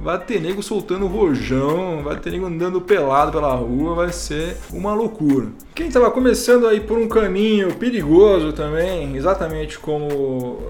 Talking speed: 150 wpm